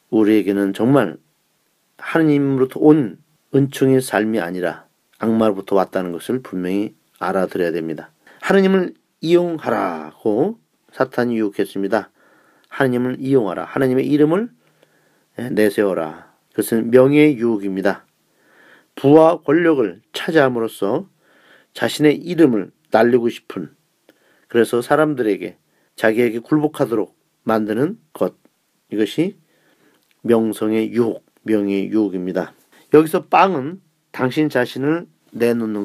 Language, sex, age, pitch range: Korean, male, 40-59, 110-155 Hz